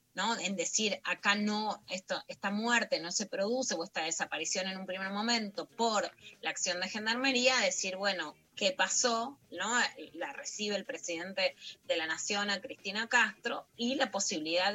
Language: Spanish